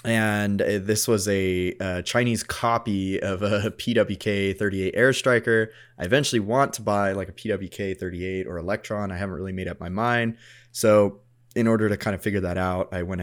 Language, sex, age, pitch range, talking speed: English, male, 20-39, 90-120 Hz, 175 wpm